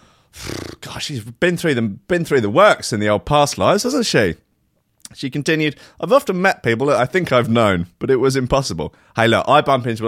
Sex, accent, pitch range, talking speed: male, British, 105-150 Hz, 200 wpm